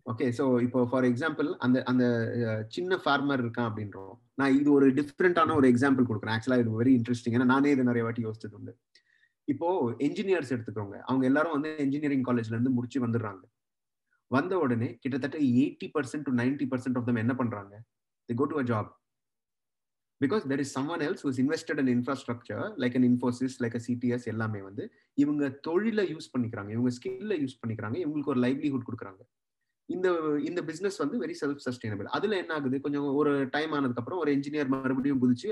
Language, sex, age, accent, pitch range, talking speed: Tamil, male, 30-49, native, 120-145 Hz, 120 wpm